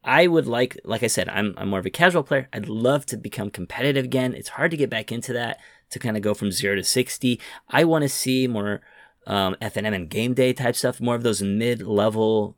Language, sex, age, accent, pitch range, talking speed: English, male, 30-49, American, 100-125 Hz, 240 wpm